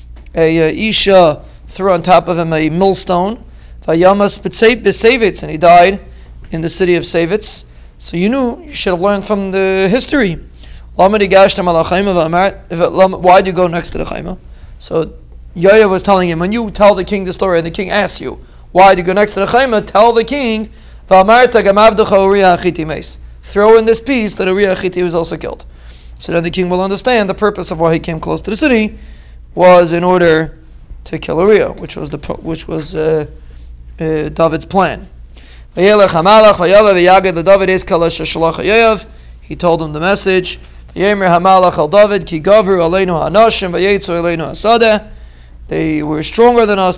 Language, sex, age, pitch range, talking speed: English, male, 40-59, 160-200 Hz, 145 wpm